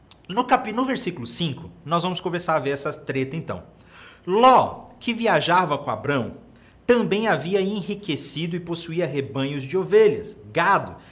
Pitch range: 135-195 Hz